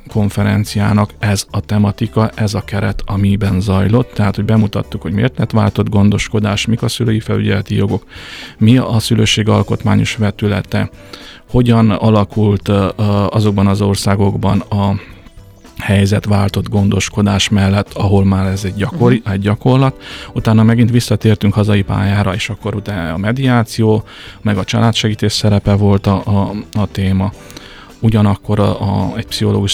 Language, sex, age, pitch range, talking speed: Hungarian, male, 30-49, 100-110 Hz, 135 wpm